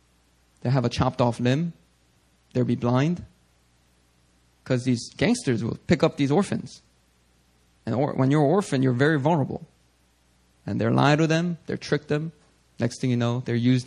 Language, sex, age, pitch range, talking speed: English, male, 20-39, 120-170 Hz, 175 wpm